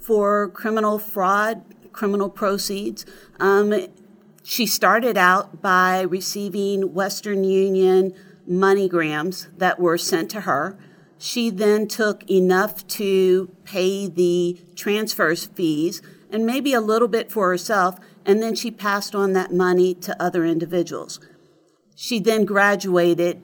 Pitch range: 180-210 Hz